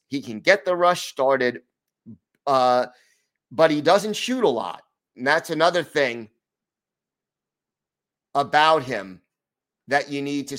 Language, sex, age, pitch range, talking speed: English, male, 30-49, 125-160 Hz, 130 wpm